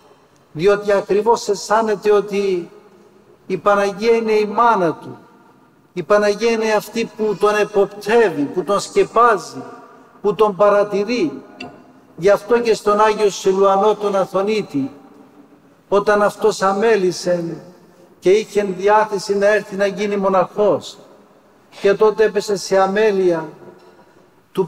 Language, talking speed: Greek, 115 wpm